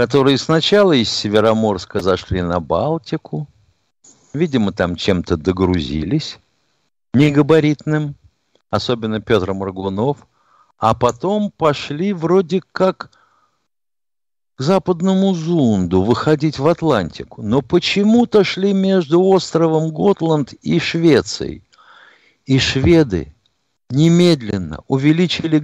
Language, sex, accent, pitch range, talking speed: Russian, male, native, 110-175 Hz, 90 wpm